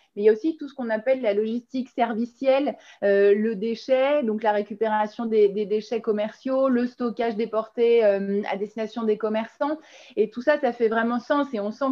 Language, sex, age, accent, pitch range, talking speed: French, female, 30-49, French, 205-255 Hz, 205 wpm